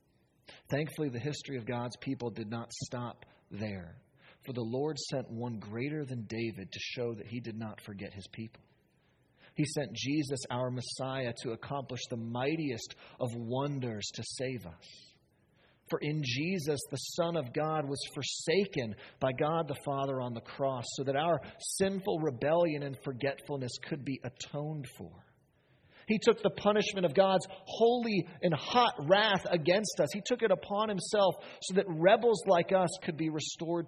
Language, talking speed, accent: English, 165 wpm, American